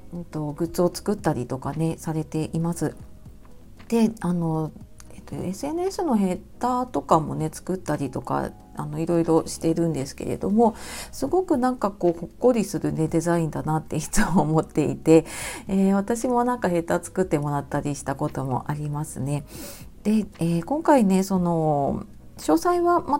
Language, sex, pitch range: Japanese, female, 160-230 Hz